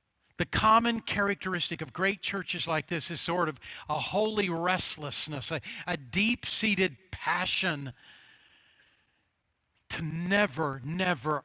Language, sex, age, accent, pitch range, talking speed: English, male, 50-69, American, 140-195 Hz, 115 wpm